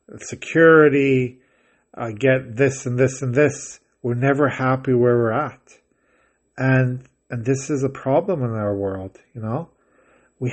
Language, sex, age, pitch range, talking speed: English, male, 40-59, 120-135 Hz, 150 wpm